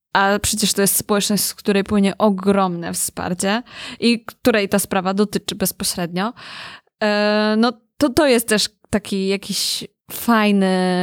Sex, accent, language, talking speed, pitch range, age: female, native, Polish, 130 wpm, 190-225 Hz, 20-39